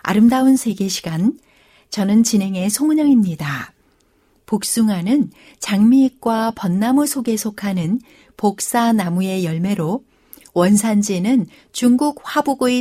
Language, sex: Korean, female